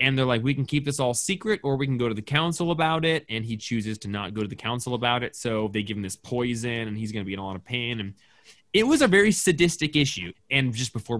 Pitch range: 115-145 Hz